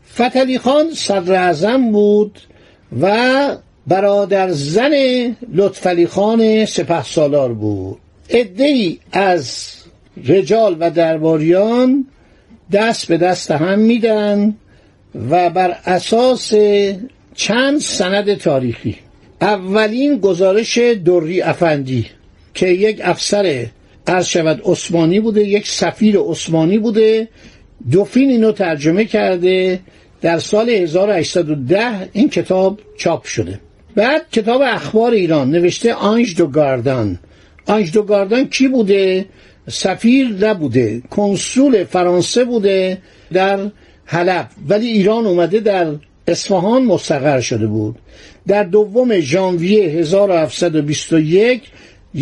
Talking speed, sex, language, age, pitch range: 95 wpm, male, Persian, 60-79, 160-215 Hz